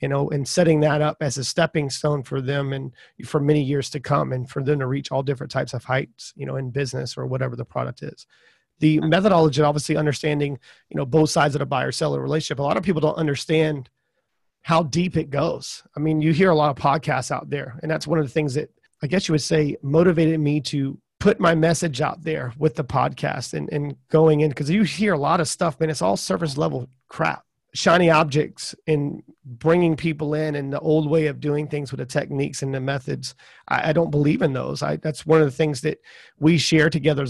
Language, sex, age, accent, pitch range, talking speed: English, male, 30-49, American, 145-170 Hz, 230 wpm